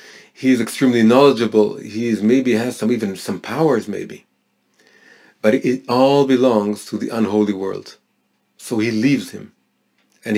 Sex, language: male, English